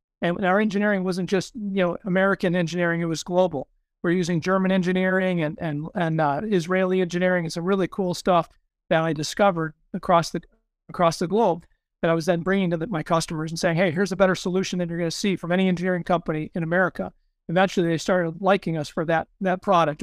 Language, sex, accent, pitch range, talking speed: English, male, American, 170-195 Hz, 215 wpm